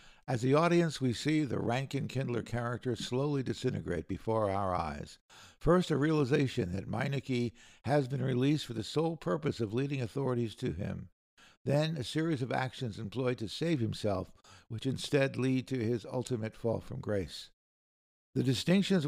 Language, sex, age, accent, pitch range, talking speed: English, male, 60-79, American, 110-140 Hz, 160 wpm